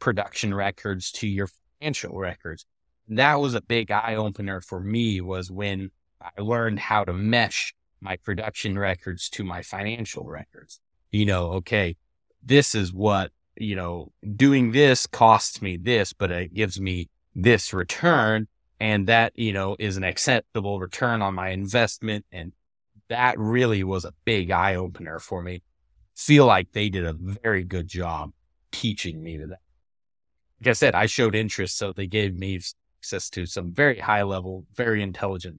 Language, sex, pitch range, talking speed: English, male, 90-110 Hz, 160 wpm